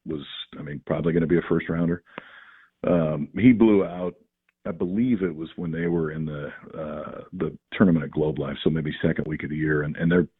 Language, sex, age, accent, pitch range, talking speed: English, male, 50-69, American, 75-95 Hz, 225 wpm